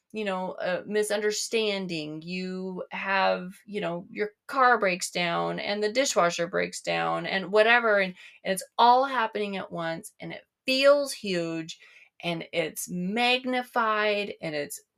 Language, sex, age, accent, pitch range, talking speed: English, female, 30-49, American, 165-215 Hz, 140 wpm